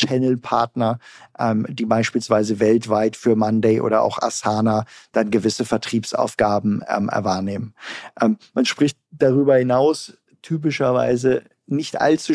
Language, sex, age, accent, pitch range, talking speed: German, male, 40-59, German, 115-135 Hz, 110 wpm